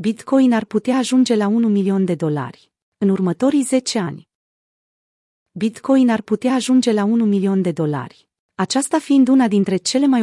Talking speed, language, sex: 165 wpm, Romanian, female